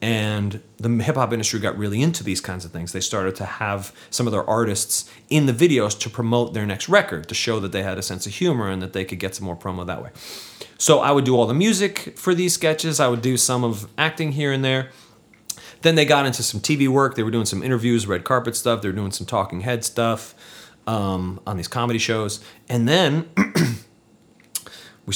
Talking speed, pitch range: 230 wpm, 100-125 Hz